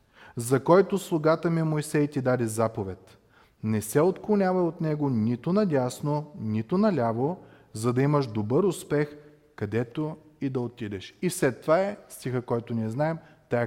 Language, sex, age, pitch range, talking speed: Bulgarian, male, 30-49, 110-160 Hz, 155 wpm